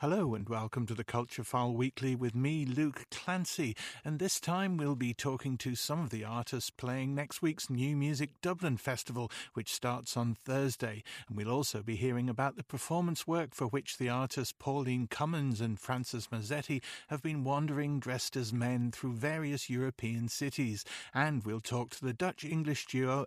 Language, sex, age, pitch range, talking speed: English, male, 50-69, 120-145 Hz, 180 wpm